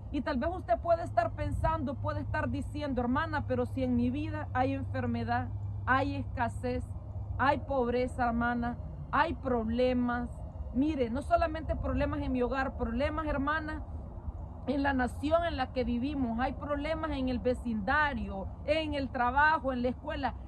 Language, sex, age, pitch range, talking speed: Spanish, female, 40-59, 245-315 Hz, 150 wpm